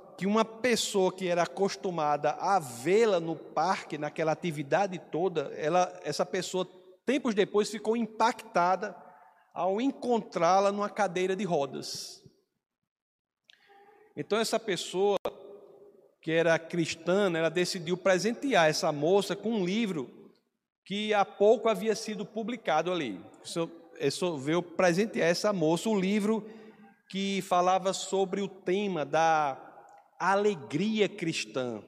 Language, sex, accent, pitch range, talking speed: Portuguese, male, Brazilian, 170-210 Hz, 115 wpm